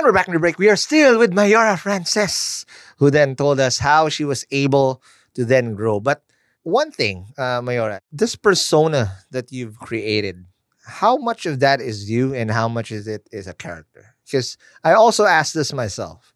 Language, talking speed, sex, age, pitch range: English, 190 wpm, male, 20-39, 105-150 Hz